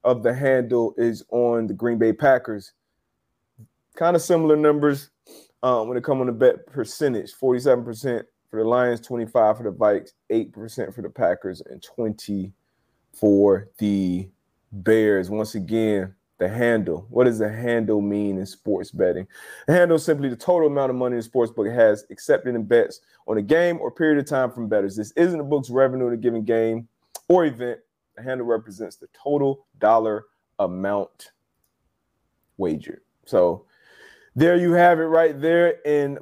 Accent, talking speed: American, 165 wpm